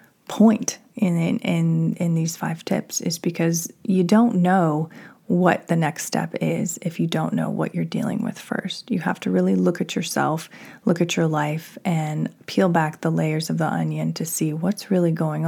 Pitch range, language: 160-205 Hz, English